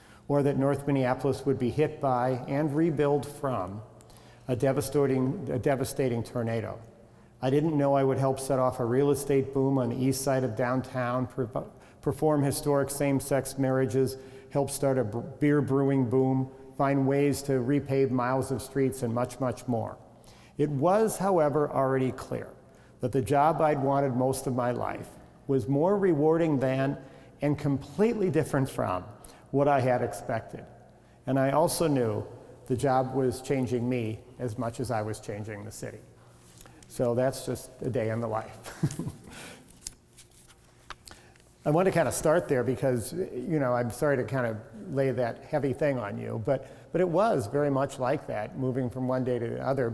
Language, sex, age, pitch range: English, male, 50-69, 125-140 Hz